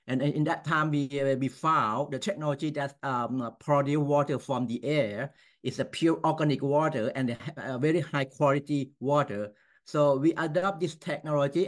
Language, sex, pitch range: Chinese, male, 130-150 Hz